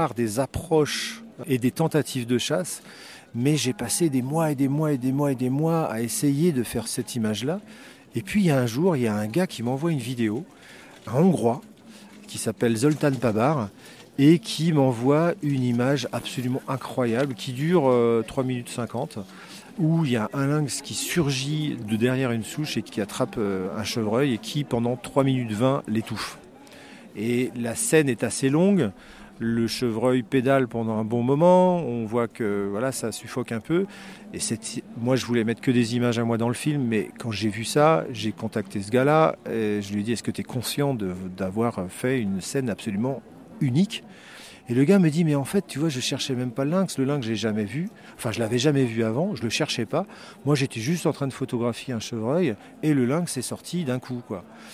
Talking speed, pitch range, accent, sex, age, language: 215 wpm, 115-155 Hz, French, male, 40-59, French